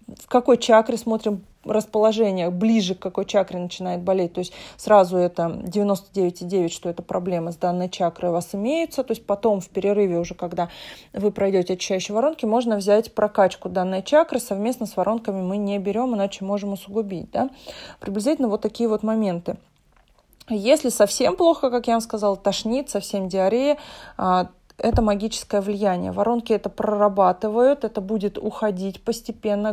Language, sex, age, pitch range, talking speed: Russian, female, 20-39, 195-235 Hz, 150 wpm